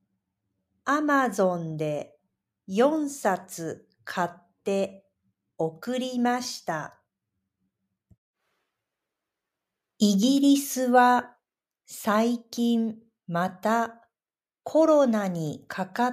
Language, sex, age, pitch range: Japanese, female, 50-69, 175-245 Hz